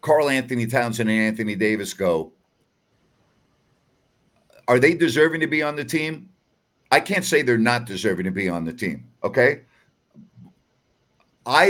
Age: 50-69